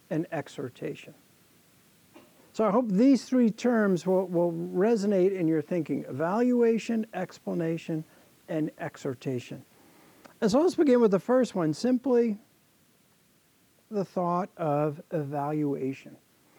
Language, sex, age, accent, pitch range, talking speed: English, male, 60-79, American, 165-225 Hz, 110 wpm